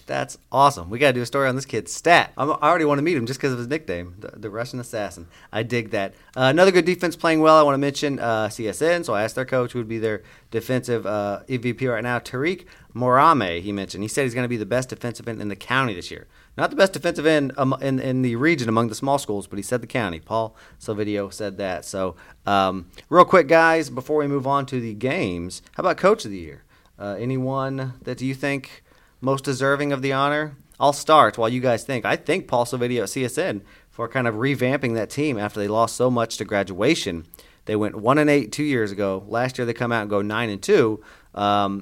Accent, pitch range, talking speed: American, 105-135 Hz, 245 wpm